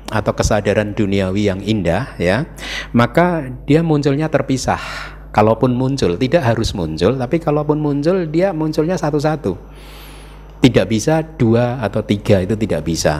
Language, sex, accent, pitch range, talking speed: Indonesian, male, native, 95-130 Hz, 130 wpm